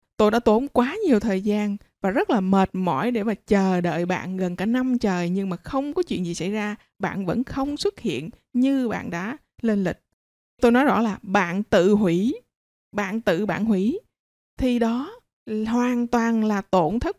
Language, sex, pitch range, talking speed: Vietnamese, female, 200-250 Hz, 200 wpm